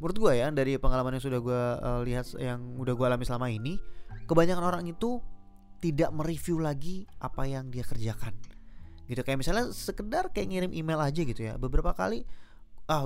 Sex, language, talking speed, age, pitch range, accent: male, Indonesian, 180 wpm, 20-39, 120-155 Hz, native